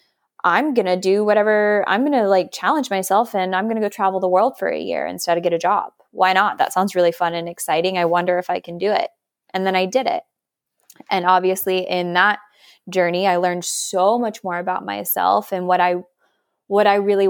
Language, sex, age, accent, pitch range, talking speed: English, female, 20-39, American, 175-195 Hz, 225 wpm